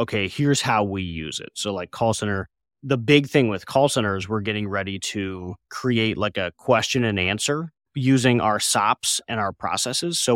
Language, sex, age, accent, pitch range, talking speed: English, male, 30-49, American, 100-125 Hz, 190 wpm